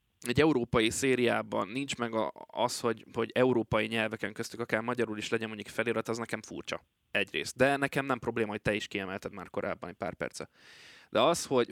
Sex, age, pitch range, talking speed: male, 20-39, 110-130 Hz, 190 wpm